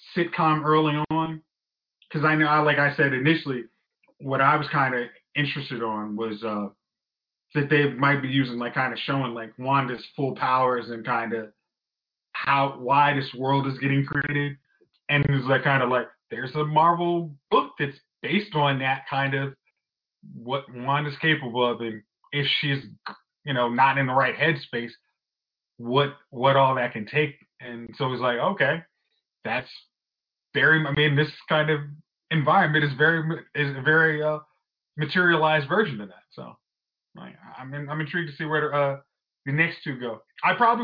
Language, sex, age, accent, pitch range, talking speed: English, male, 20-39, American, 130-155 Hz, 175 wpm